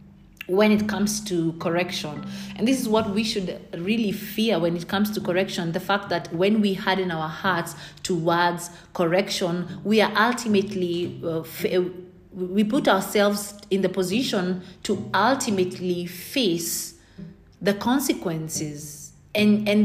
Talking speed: 140 wpm